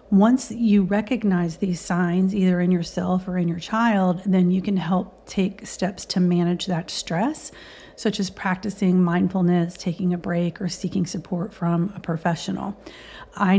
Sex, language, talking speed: female, English, 160 wpm